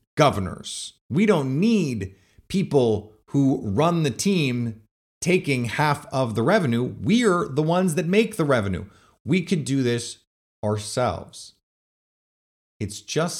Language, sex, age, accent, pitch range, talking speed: English, male, 30-49, American, 105-160 Hz, 125 wpm